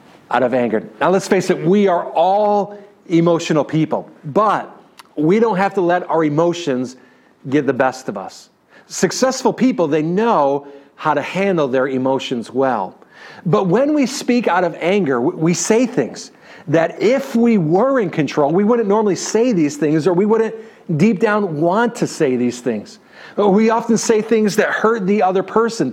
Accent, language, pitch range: American, English, 155-215 Hz